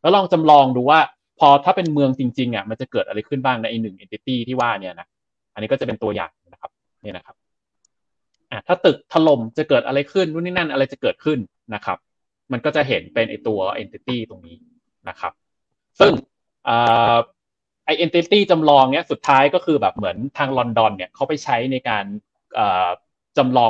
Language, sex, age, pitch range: Thai, male, 20-39, 110-140 Hz